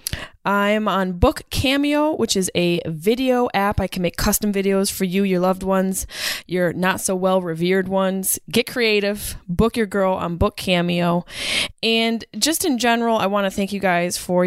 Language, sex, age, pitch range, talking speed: English, female, 20-39, 180-215 Hz, 170 wpm